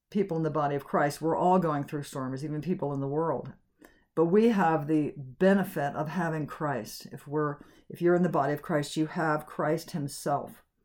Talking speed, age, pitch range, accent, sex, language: 200 wpm, 60-79, 145-180 Hz, American, female, English